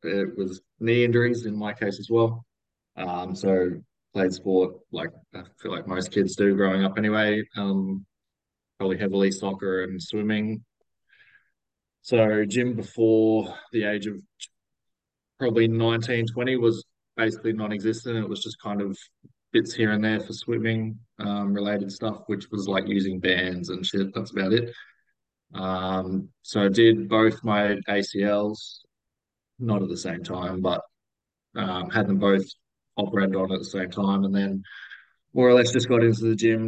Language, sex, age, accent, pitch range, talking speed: English, male, 20-39, Australian, 95-110 Hz, 160 wpm